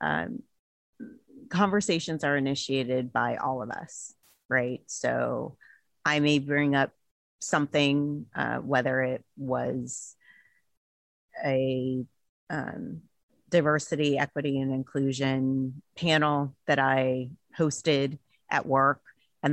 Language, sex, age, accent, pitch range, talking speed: English, female, 30-49, American, 130-150 Hz, 100 wpm